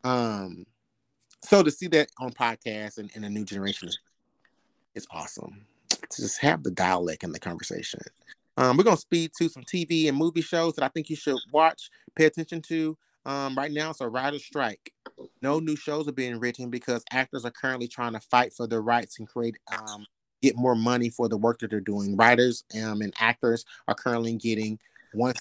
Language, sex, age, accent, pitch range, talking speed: English, male, 30-49, American, 105-140 Hz, 205 wpm